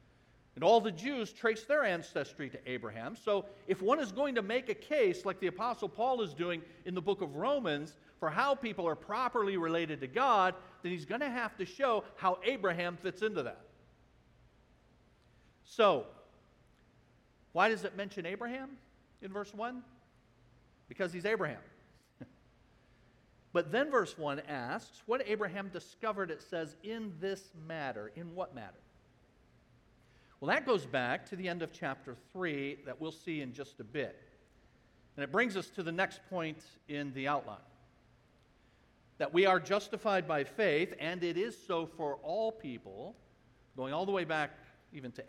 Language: English